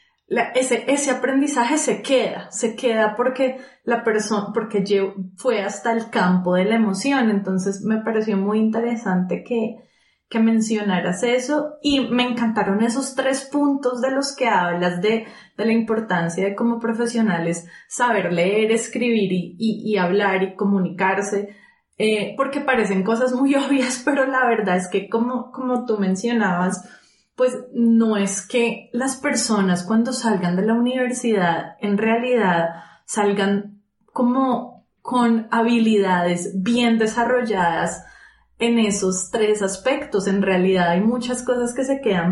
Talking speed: 140 wpm